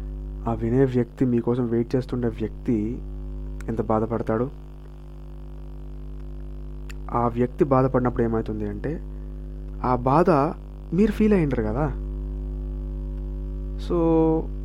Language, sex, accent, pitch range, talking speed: Telugu, male, native, 80-130 Hz, 85 wpm